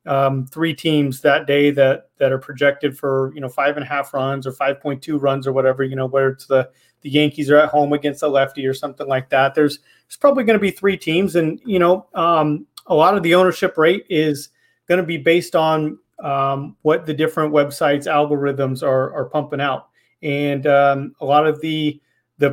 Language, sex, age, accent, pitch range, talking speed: English, male, 30-49, American, 140-155 Hz, 215 wpm